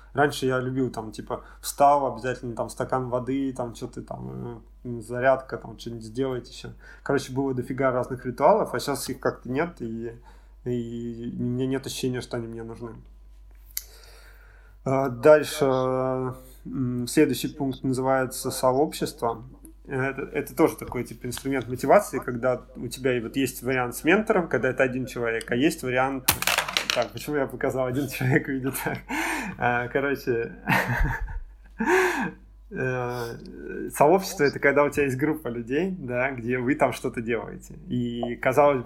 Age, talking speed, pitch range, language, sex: 20-39, 135 wpm, 120-135 Hz, Russian, male